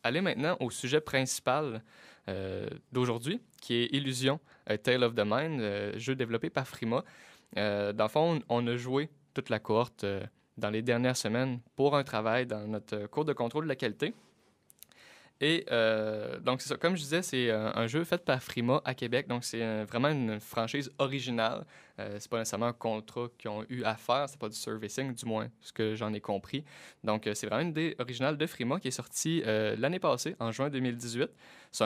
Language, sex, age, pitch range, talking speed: French, male, 20-39, 110-135 Hz, 210 wpm